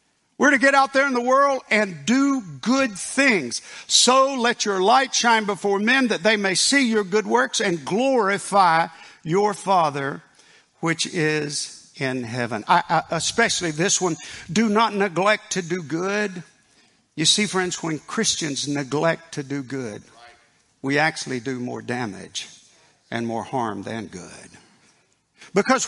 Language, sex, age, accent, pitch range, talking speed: English, male, 50-69, American, 160-230 Hz, 145 wpm